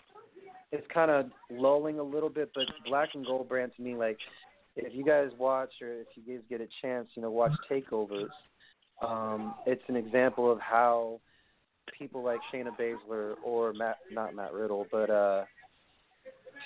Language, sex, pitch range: English, male, 115-130 Hz